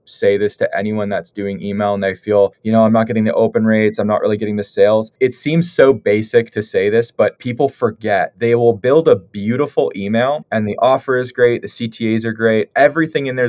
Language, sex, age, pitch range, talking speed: English, male, 20-39, 110-140 Hz, 230 wpm